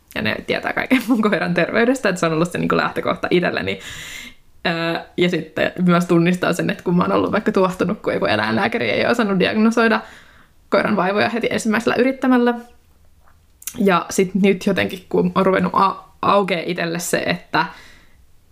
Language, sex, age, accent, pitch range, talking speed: Finnish, female, 20-39, native, 170-195 Hz, 170 wpm